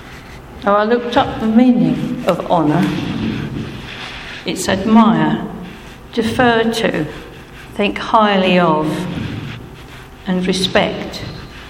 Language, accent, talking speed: English, British, 85 wpm